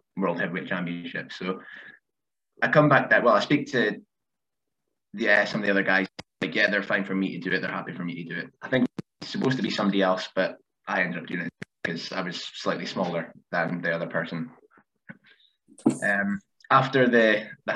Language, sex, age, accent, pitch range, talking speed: English, male, 20-39, British, 95-130 Hz, 210 wpm